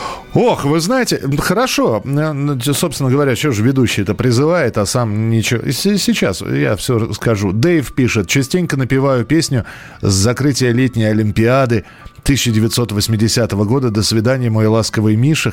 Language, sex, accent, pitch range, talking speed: Russian, male, native, 105-140 Hz, 130 wpm